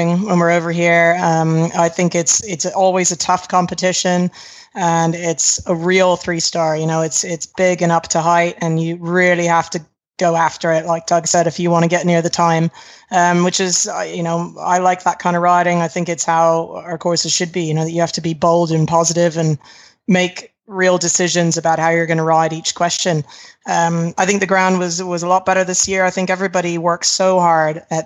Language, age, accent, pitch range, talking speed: English, 30-49, American, 165-185 Hz, 225 wpm